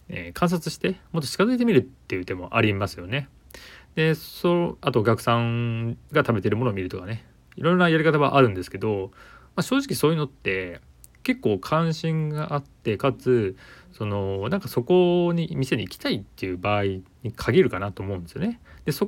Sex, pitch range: male, 100-155 Hz